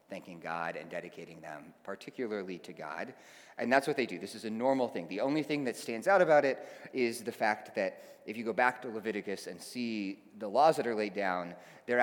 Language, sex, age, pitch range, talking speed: English, male, 30-49, 100-130 Hz, 225 wpm